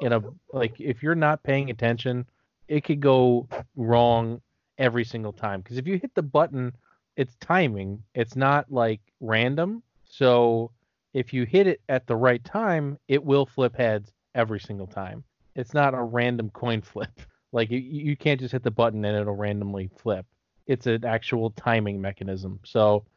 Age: 30-49